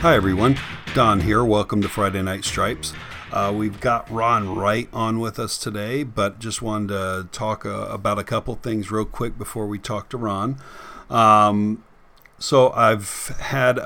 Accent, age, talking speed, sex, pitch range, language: American, 40-59, 170 wpm, male, 105-125 Hz, English